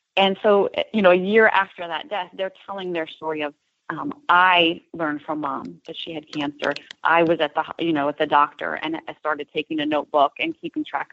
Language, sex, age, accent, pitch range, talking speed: English, female, 30-49, American, 155-195 Hz, 220 wpm